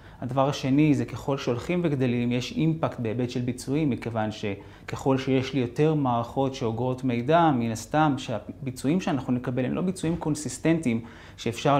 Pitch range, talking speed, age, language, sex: 120-150 Hz, 145 wpm, 30-49, Hebrew, male